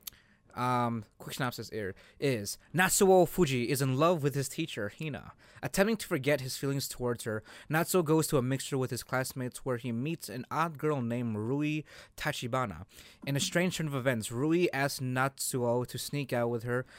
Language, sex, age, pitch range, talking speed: English, male, 20-39, 120-155 Hz, 185 wpm